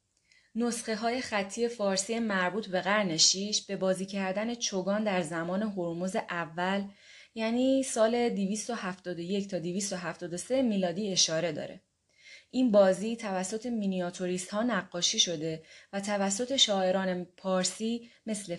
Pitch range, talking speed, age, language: 175-215 Hz, 115 wpm, 20-39, Persian